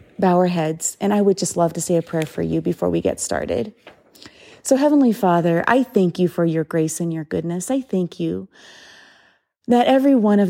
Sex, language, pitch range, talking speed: female, English, 175-215 Hz, 210 wpm